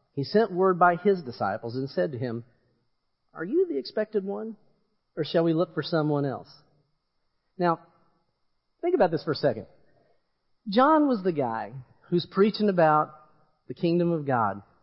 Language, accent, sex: English, American, male